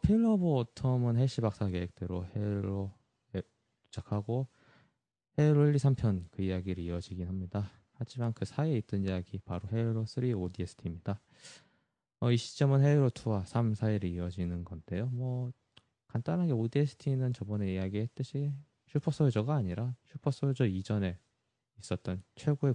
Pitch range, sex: 95-135 Hz, male